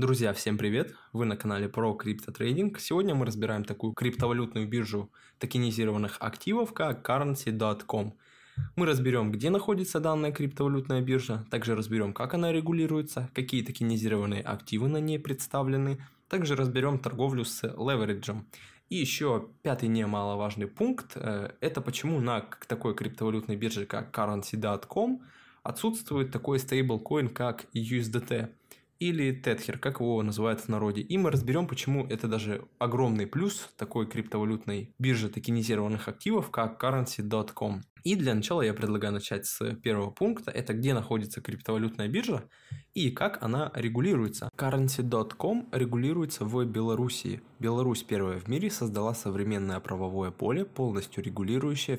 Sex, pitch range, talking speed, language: male, 105-135 Hz, 130 wpm, Russian